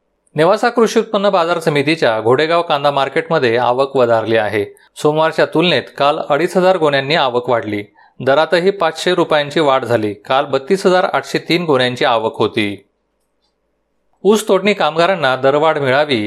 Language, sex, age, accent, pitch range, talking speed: Marathi, male, 30-49, native, 130-170 Hz, 125 wpm